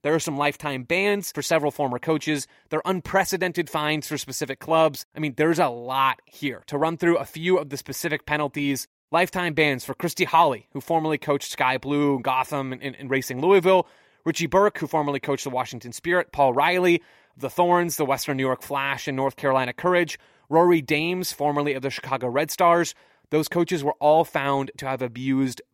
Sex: male